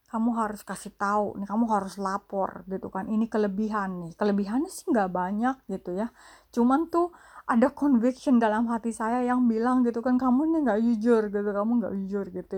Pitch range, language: 195-235 Hz, English